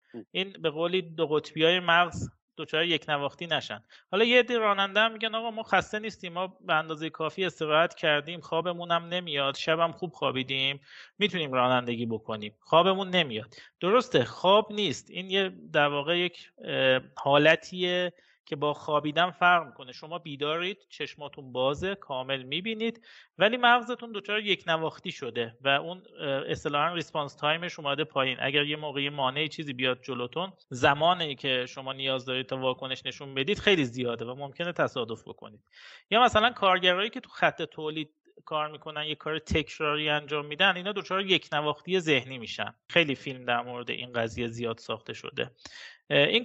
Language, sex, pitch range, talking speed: Persian, male, 140-180 Hz, 155 wpm